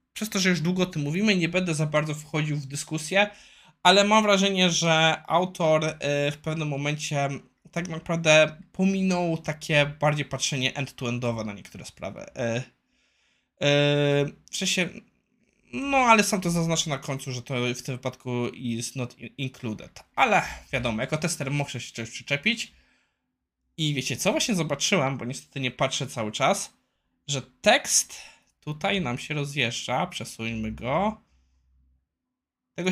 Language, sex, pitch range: Polish, male, 135-185 Hz